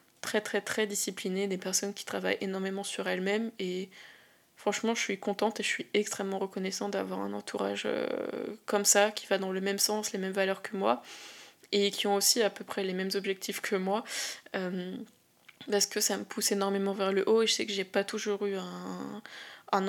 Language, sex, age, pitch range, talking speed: French, female, 20-39, 195-220 Hz, 210 wpm